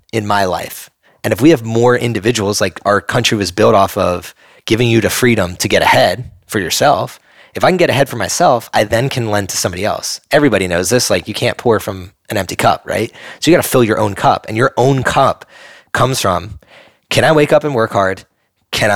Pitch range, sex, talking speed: 100-120 Hz, male, 230 wpm